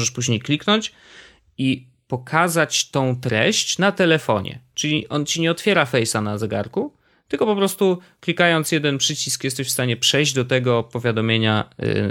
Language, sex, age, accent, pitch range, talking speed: Polish, male, 20-39, native, 110-140 Hz, 150 wpm